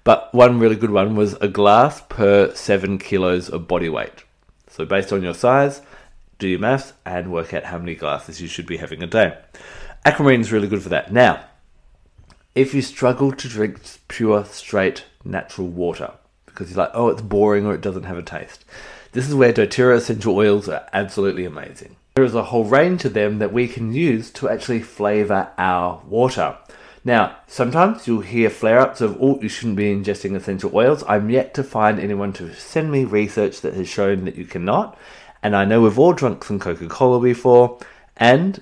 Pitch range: 95-125 Hz